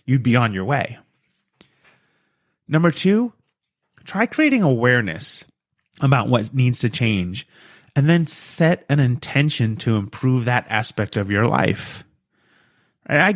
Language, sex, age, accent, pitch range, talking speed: English, male, 30-49, American, 110-140 Hz, 125 wpm